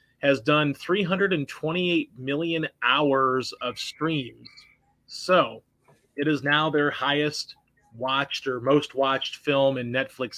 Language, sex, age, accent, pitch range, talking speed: English, male, 30-49, American, 130-150 Hz, 115 wpm